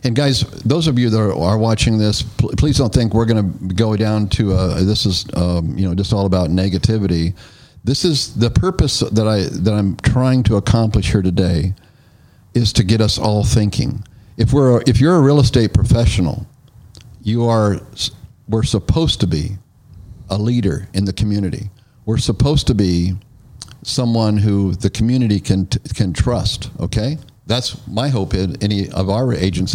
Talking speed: 175 wpm